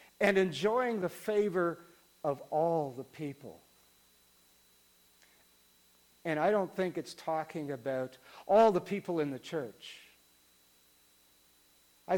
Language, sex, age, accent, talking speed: English, male, 60-79, American, 110 wpm